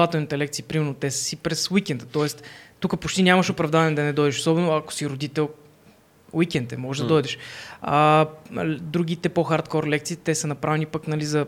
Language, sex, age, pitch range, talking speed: Bulgarian, female, 20-39, 145-165 Hz, 170 wpm